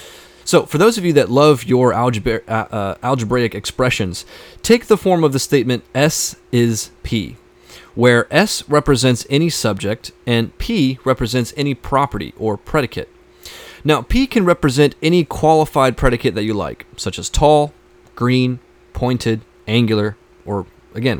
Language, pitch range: English, 115-160 Hz